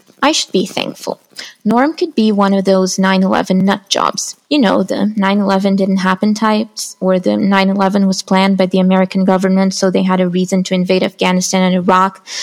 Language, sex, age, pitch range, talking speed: English, female, 20-39, 190-270 Hz, 185 wpm